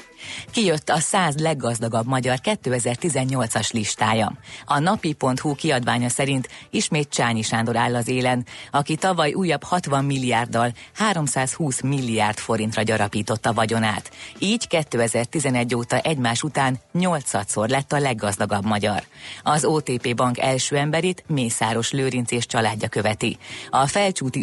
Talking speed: 120 wpm